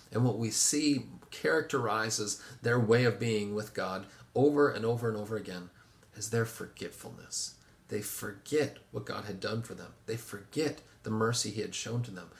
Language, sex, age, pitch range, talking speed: English, male, 40-59, 110-130 Hz, 180 wpm